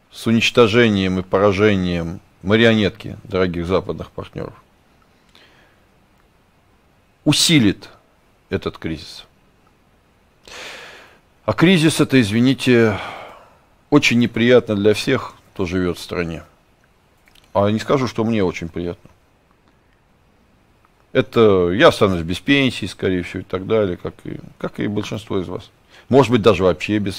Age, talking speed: 50-69, 115 wpm